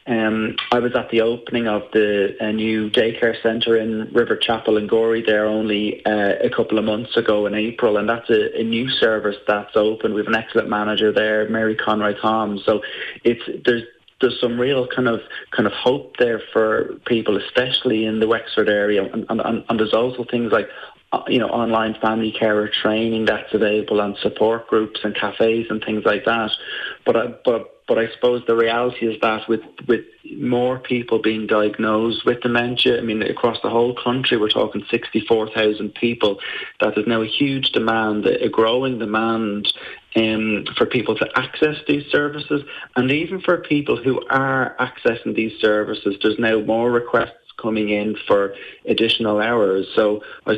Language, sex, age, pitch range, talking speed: English, male, 30-49, 105-120 Hz, 180 wpm